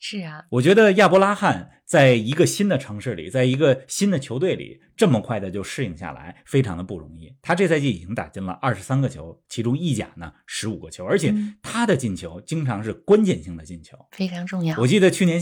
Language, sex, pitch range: Chinese, male, 115-165 Hz